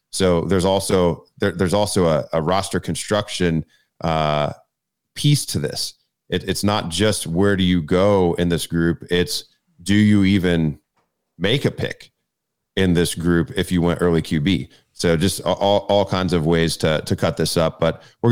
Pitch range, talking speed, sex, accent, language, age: 85-100 Hz, 175 wpm, male, American, English, 30-49